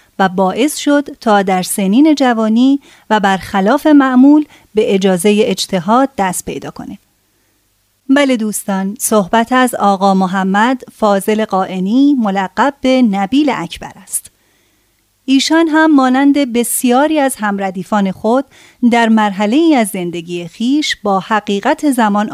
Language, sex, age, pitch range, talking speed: Persian, female, 30-49, 195-270 Hz, 120 wpm